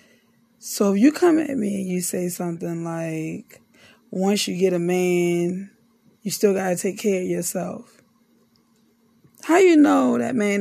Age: 20-39